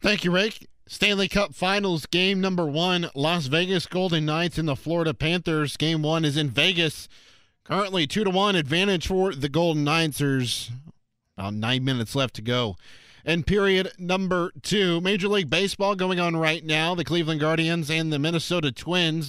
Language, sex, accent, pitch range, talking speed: English, male, American, 130-175 Hz, 170 wpm